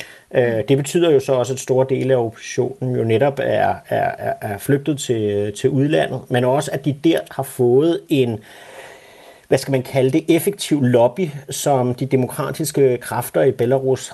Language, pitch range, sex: Danish, 115-135 Hz, male